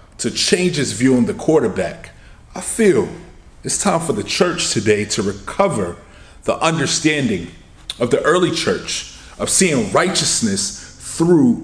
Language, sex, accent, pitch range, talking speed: English, male, American, 90-145 Hz, 140 wpm